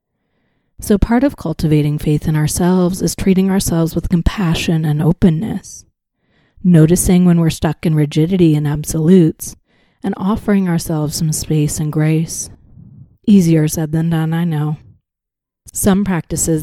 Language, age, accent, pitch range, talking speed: English, 30-49, American, 155-175 Hz, 135 wpm